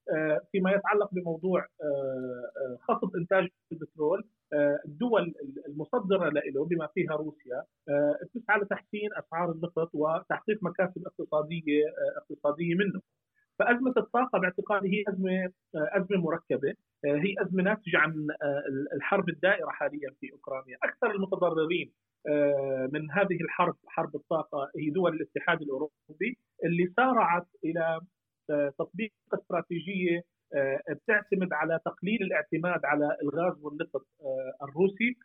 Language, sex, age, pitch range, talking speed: Arabic, male, 40-59, 150-195 Hz, 105 wpm